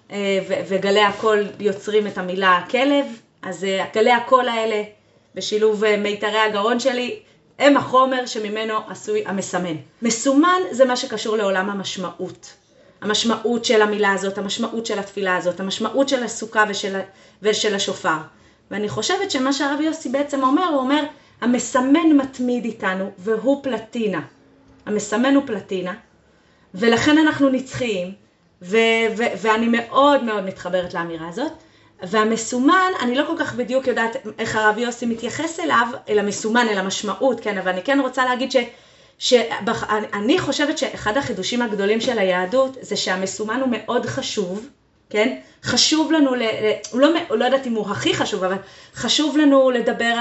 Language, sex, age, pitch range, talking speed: Hebrew, female, 30-49, 205-260 Hz, 130 wpm